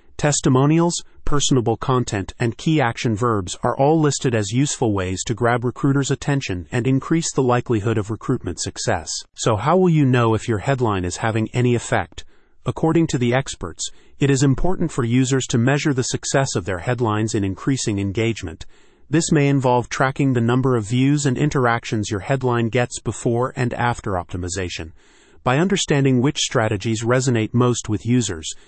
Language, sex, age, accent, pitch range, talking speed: English, male, 30-49, American, 110-135 Hz, 165 wpm